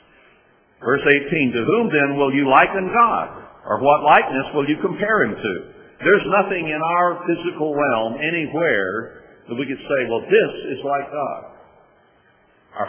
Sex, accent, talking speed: male, American, 160 wpm